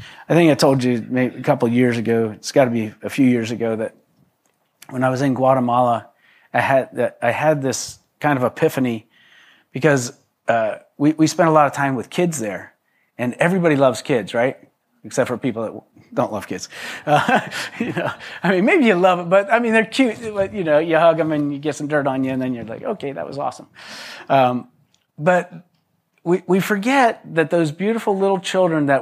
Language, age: English, 30-49